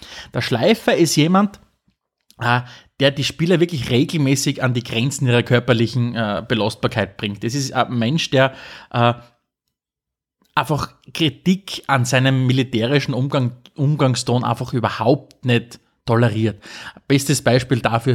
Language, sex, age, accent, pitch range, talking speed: German, male, 30-49, Austrian, 115-140 Hz, 125 wpm